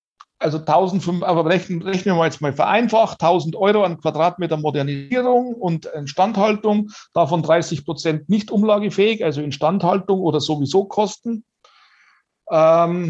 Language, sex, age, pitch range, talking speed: German, male, 60-79, 140-185 Hz, 125 wpm